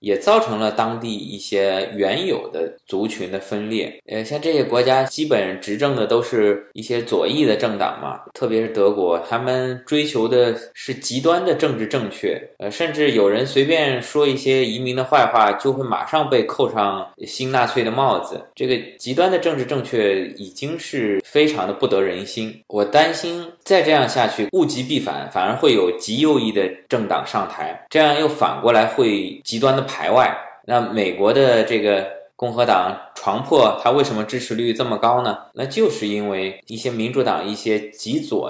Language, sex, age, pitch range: Chinese, male, 20-39, 105-150 Hz